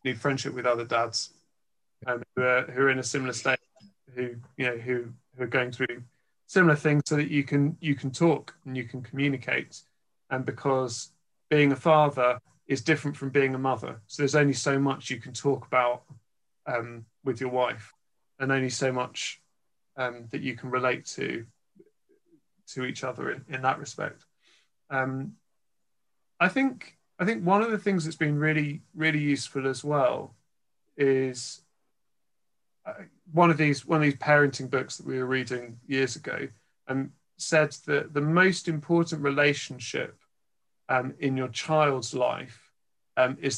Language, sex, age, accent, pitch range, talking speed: English, male, 30-49, British, 125-155 Hz, 165 wpm